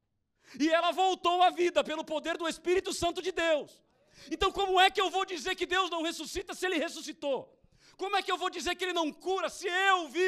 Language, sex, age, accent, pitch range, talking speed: Portuguese, male, 50-69, Brazilian, 240-310 Hz, 230 wpm